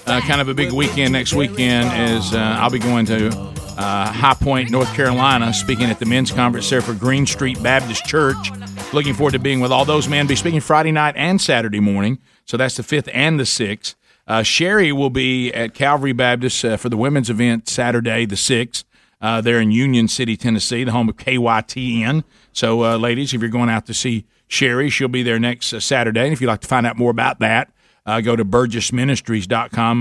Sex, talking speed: male, 215 wpm